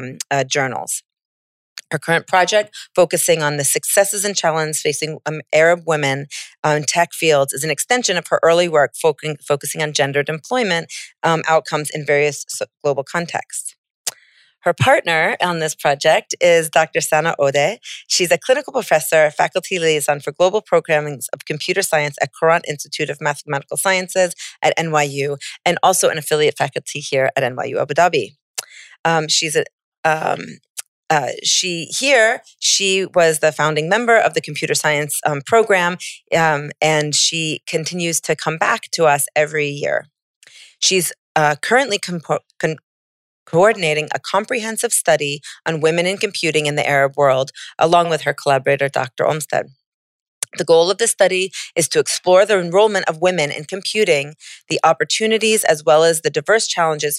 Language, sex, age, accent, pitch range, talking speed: English, female, 40-59, American, 145-180 Hz, 155 wpm